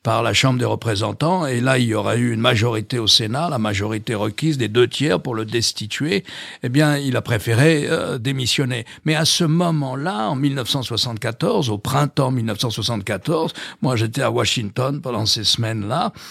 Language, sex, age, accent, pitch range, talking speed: French, male, 60-79, French, 120-155 Hz, 175 wpm